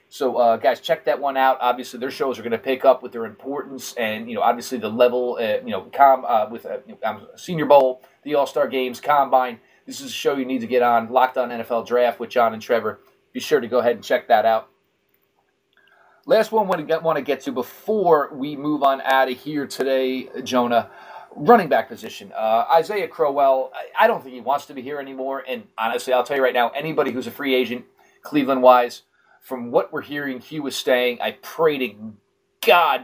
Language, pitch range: English, 125-150 Hz